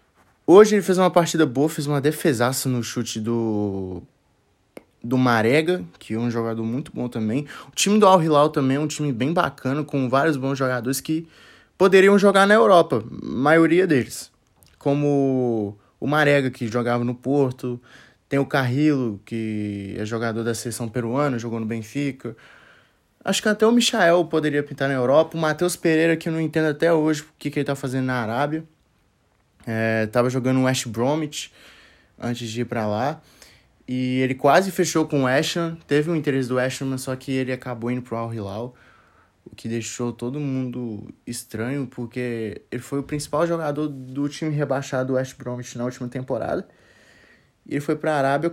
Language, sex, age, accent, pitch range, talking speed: Portuguese, male, 20-39, Brazilian, 120-150 Hz, 180 wpm